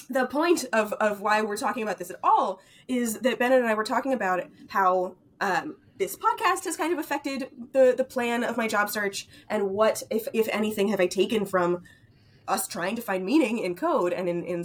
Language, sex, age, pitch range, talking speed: English, female, 20-39, 175-245 Hz, 215 wpm